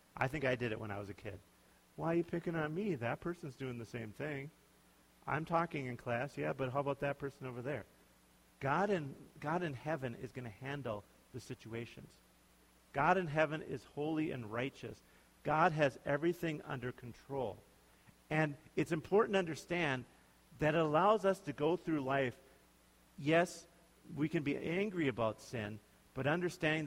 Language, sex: English, male